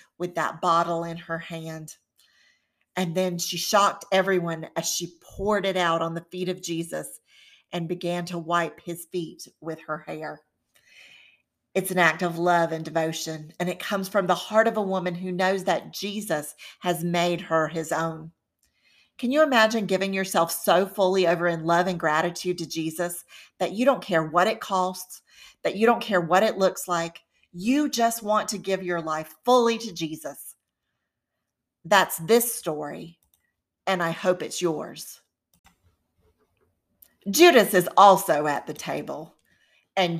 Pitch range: 160-190 Hz